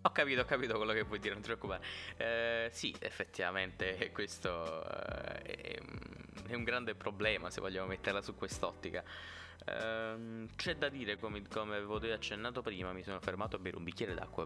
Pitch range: 95-115 Hz